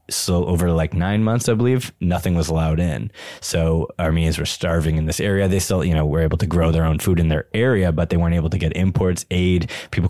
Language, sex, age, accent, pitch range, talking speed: English, male, 20-39, American, 80-95 Hz, 245 wpm